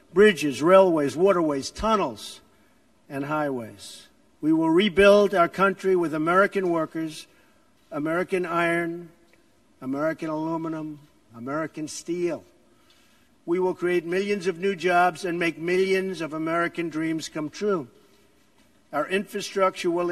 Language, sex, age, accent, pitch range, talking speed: English, male, 60-79, American, 160-195 Hz, 115 wpm